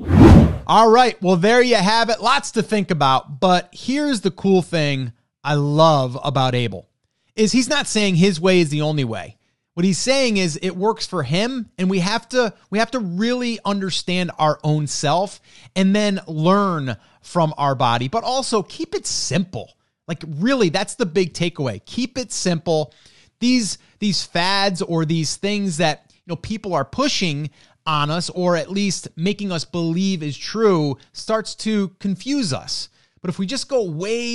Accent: American